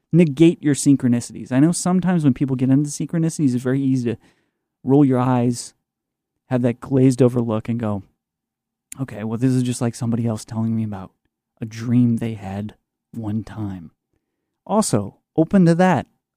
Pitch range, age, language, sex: 120-145 Hz, 30-49, English, male